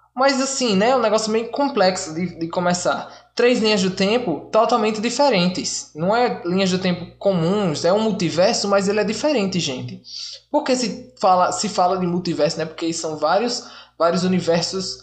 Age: 20-39